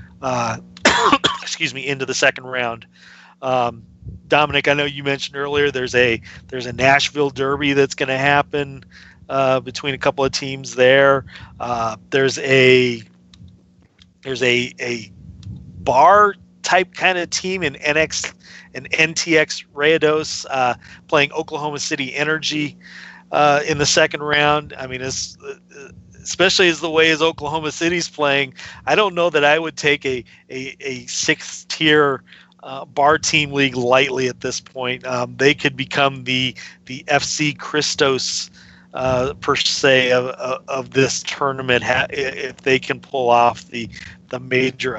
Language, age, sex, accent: English, 40-59, male, American